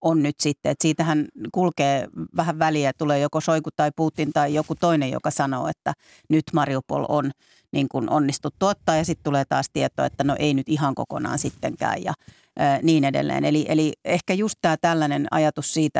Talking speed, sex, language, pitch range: 185 wpm, female, Finnish, 140-160 Hz